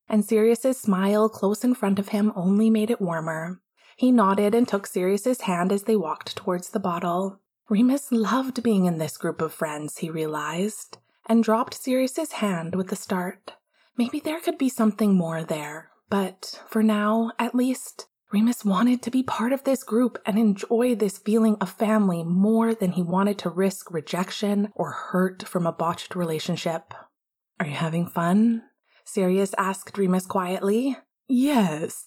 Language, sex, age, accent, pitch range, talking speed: English, female, 20-39, American, 170-225 Hz, 165 wpm